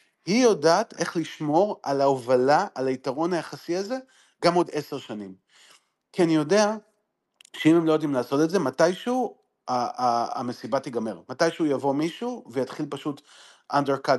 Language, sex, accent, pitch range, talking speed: Hebrew, male, native, 130-185 Hz, 140 wpm